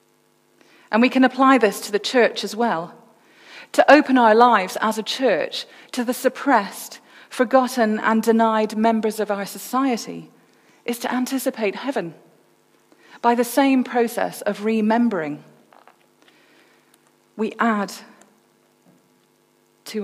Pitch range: 210-255 Hz